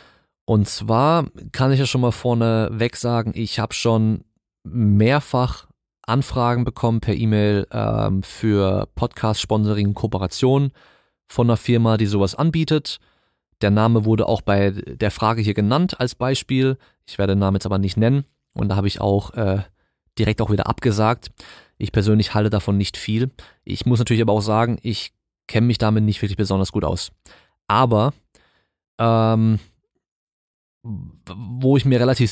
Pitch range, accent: 105-120 Hz, German